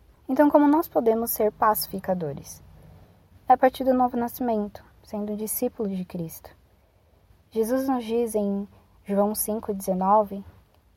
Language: Portuguese